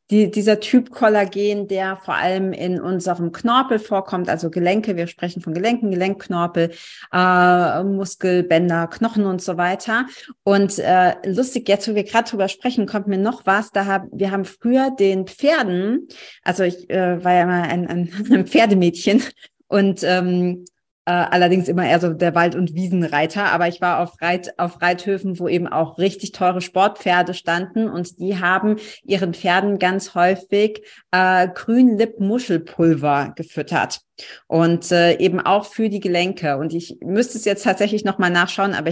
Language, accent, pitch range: German, German, 175-205 Hz